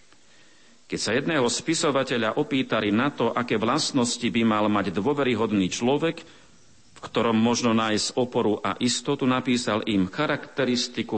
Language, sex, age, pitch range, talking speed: Slovak, male, 50-69, 110-145 Hz, 130 wpm